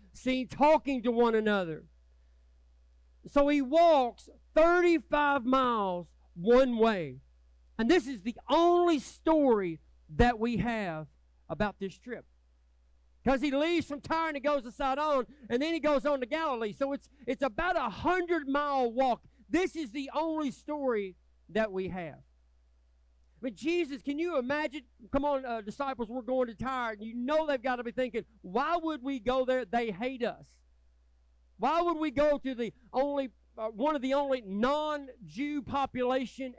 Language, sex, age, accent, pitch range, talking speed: English, male, 50-69, American, 195-280 Hz, 160 wpm